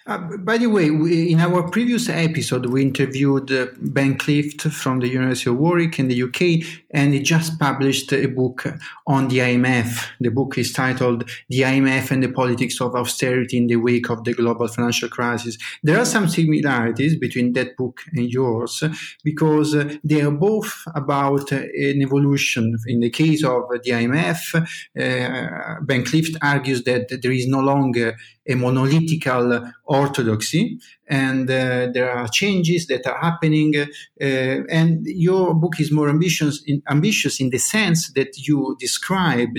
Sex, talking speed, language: male, 165 wpm, English